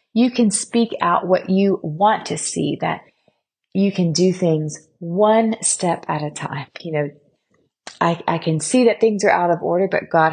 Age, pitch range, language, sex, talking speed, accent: 30-49, 160-200 Hz, English, female, 190 wpm, American